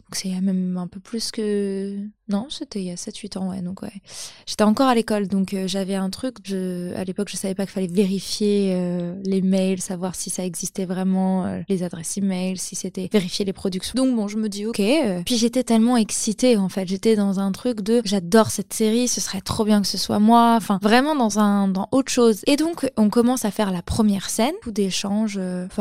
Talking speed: 240 wpm